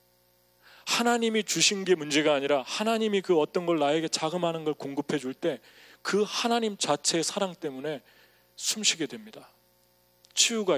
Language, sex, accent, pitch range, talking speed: English, male, Korean, 120-175 Hz, 115 wpm